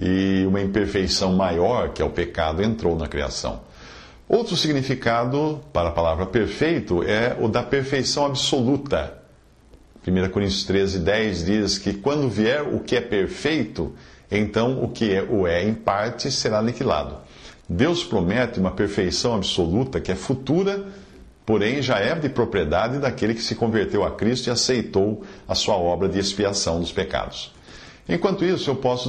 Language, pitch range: English, 95-135 Hz